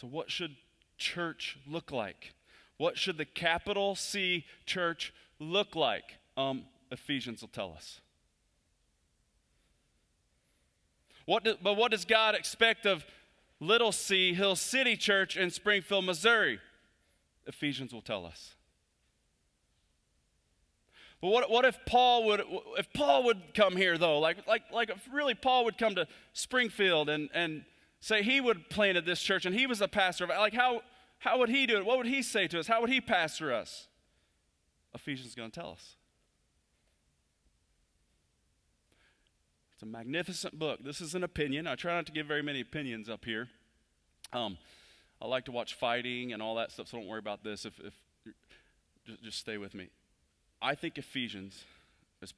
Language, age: English, 30-49